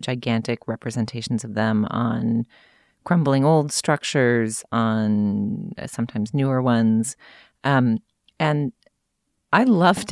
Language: English